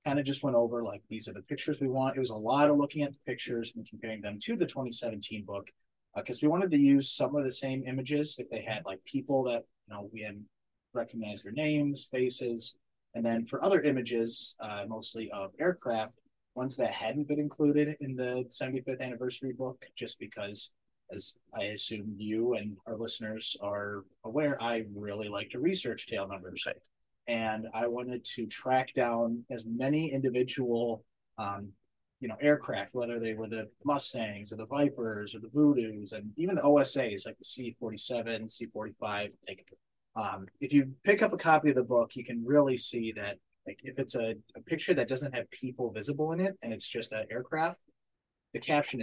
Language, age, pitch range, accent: English, 30-49, 110-140 Hz, American